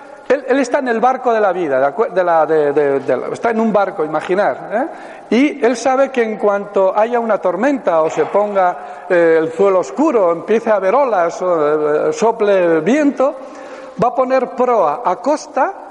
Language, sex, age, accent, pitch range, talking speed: Spanish, male, 60-79, Spanish, 195-265 Hz, 195 wpm